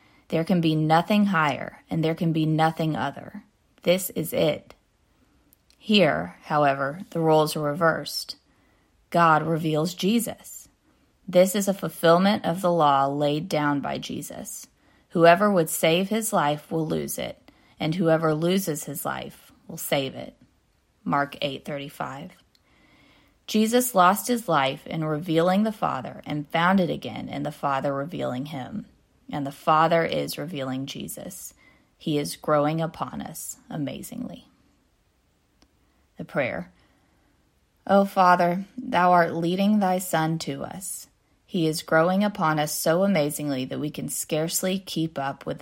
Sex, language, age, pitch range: female, English, 30-49, 150-185 Hz